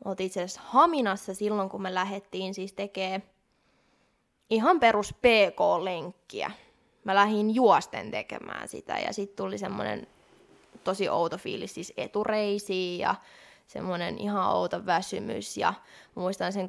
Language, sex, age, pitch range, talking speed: Finnish, female, 20-39, 190-215 Hz, 125 wpm